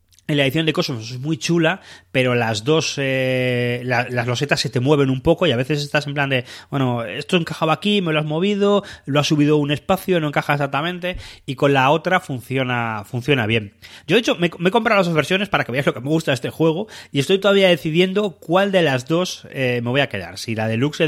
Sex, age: male, 30-49